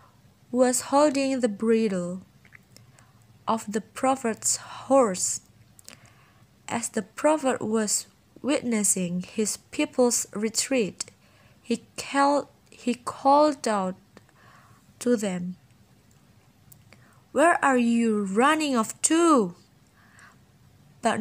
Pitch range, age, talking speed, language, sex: 200-260 Hz, 20-39, 80 wpm, English, female